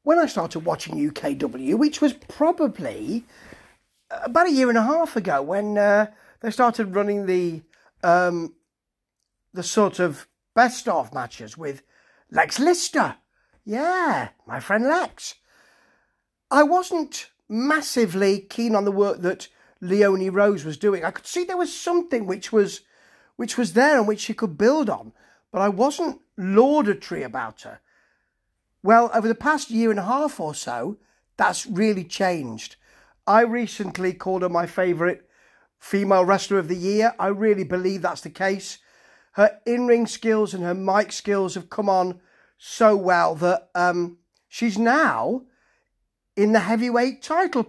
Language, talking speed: English, 150 wpm